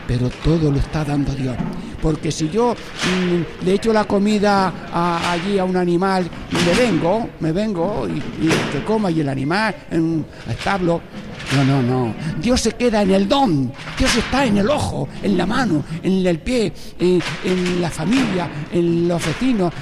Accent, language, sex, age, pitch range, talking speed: Spanish, Spanish, male, 60-79, 155-205 Hz, 180 wpm